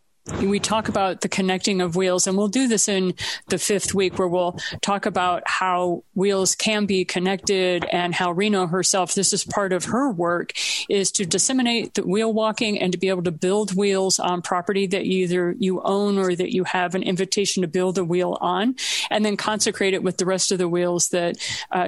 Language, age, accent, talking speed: English, 40-59, American, 210 wpm